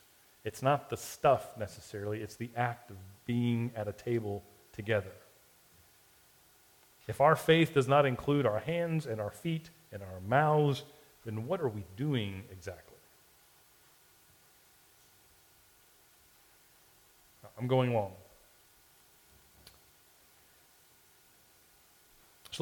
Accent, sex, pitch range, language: American, male, 110-145 Hz, English